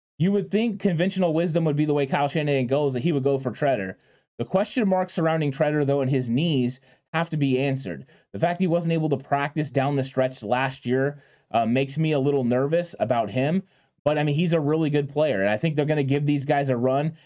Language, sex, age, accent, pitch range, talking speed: English, male, 20-39, American, 135-170 Hz, 245 wpm